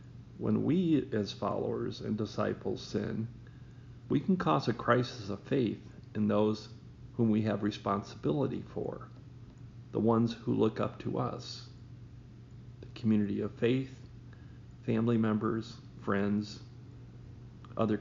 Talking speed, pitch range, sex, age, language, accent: 120 wpm, 110-125 Hz, male, 40-59, English, American